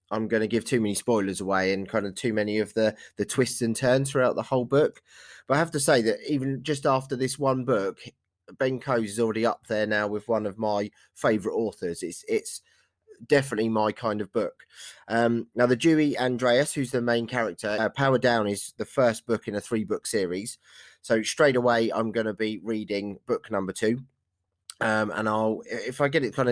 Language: English